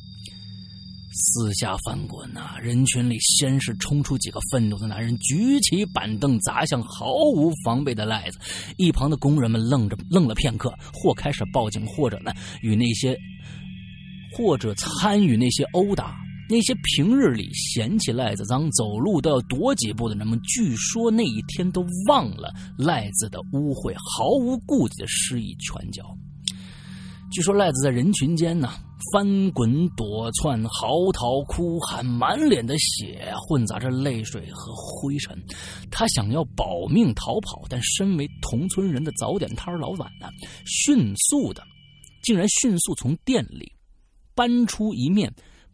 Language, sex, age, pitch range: Chinese, male, 30-49, 110-175 Hz